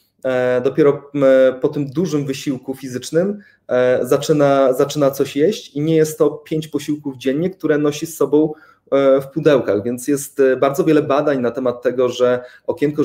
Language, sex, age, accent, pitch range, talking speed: Polish, male, 30-49, native, 130-155 Hz, 150 wpm